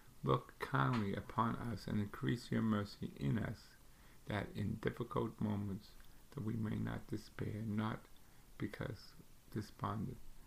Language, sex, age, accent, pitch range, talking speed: English, male, 50-69, American, 105-115 Hz, 125 wpm